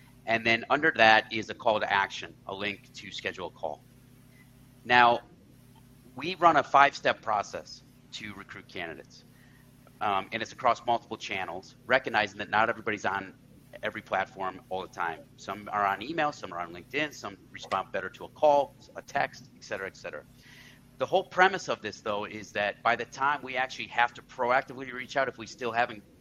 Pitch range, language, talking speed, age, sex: 110-130 Hz, English, 190 wpm, 40-59, male